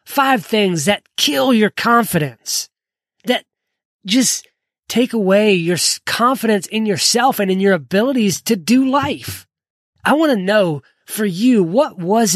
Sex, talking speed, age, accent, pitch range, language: male, 140 wpm, 20-39, American, 170-230 Hz, English